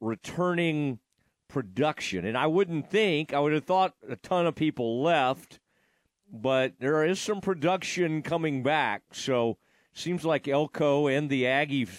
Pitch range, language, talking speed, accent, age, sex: 115-160 Hz, English, 145 wpm, American, 40-59, male